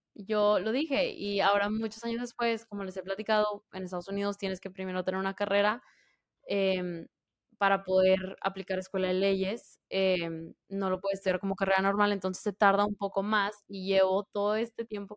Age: 20-39